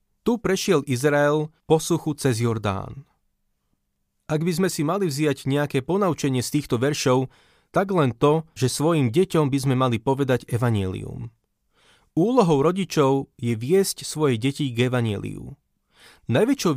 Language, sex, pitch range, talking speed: Slovak, male, 125-160 Hz, 135 wpm